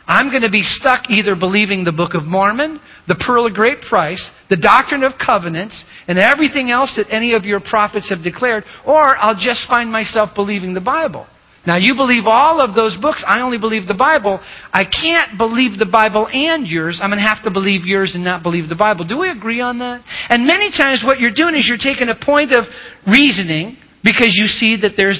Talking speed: 220 wpm